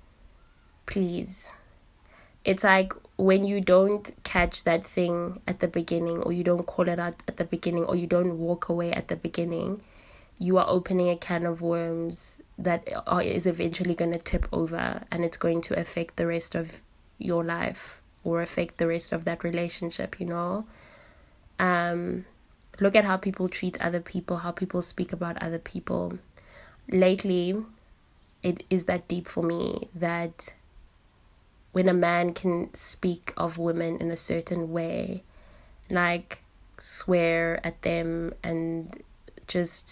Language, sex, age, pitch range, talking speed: English, female, 20-39, 165-180 Hz, 150 wpm